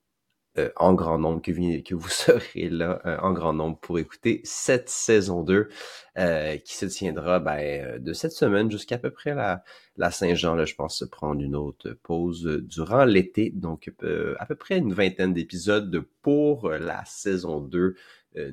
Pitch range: 85-110 Hz